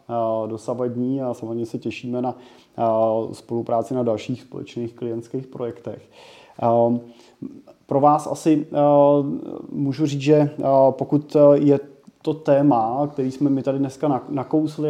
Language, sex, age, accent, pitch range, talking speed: Czech, male, 20-39, native, 115-140 Hz, 115 wpm